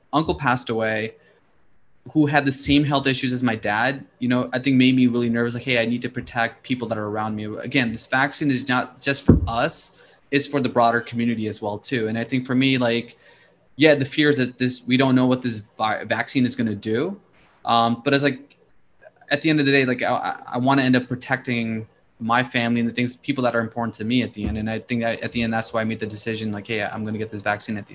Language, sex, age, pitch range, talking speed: English, male, 20-39, 115-135 Hz, 265 wpm